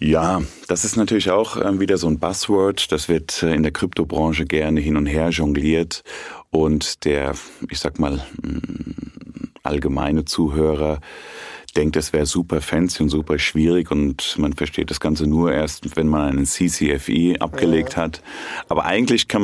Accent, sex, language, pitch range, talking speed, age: German, male, German, 75-90 Hz, 155 wpm, 40-59